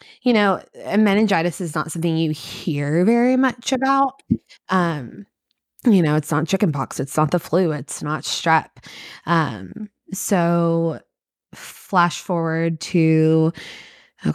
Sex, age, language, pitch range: female, 20-39, English, 155-190 Hz